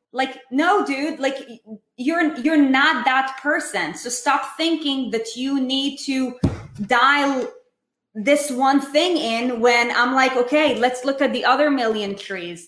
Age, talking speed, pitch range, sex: 20-39, 150 wpm, 220-275 Hz, female